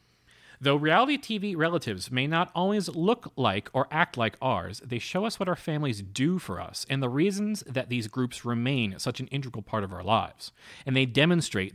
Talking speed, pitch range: 200 wpm, 105-165 Hz